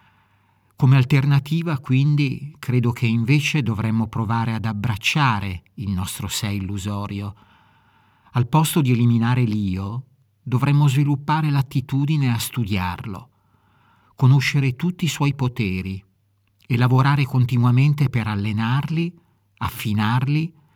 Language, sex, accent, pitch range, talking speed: Italian, male, native, 105-135 Hz, 100 wpm